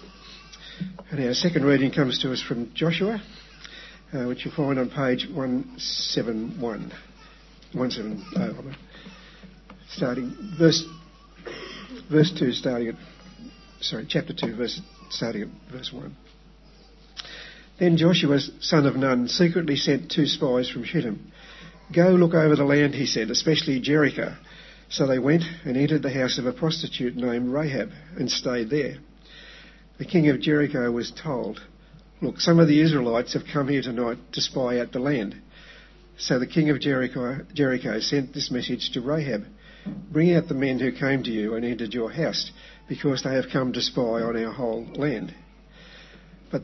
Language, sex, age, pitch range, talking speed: English, male, 50-69, 130-170 Hz, 155 wpm